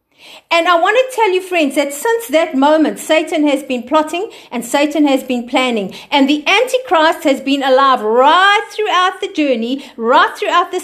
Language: English